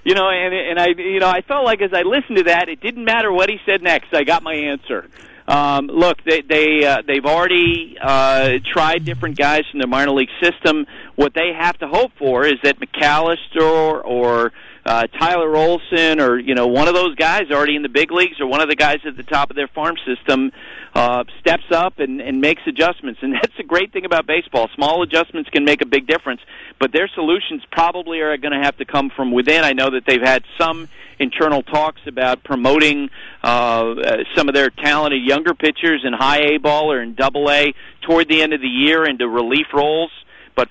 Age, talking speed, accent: 50-69, 220 wpm, American